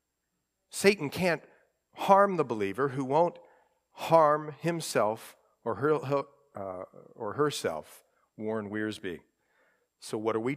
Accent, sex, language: American, male, English